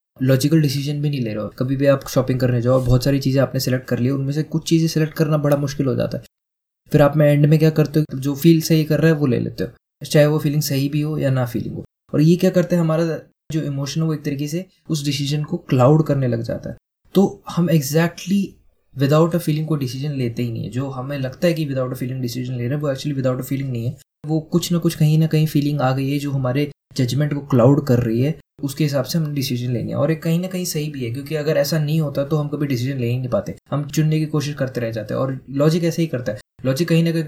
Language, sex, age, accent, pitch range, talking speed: Hindi, male, 20-39, native, 135-155 Hz, 285 wpm